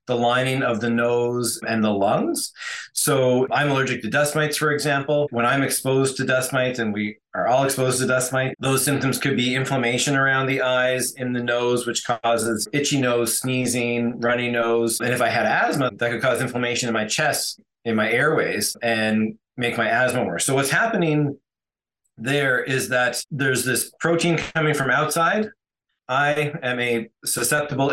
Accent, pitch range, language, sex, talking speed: American, 120-140 Hz, English, male, 180 wpm